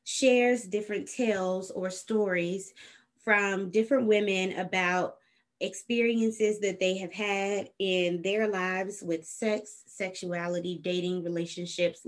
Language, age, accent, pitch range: English, 20-39, American, 165-195 Hz